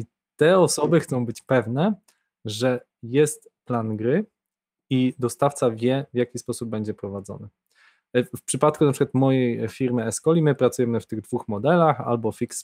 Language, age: Polish, 20-39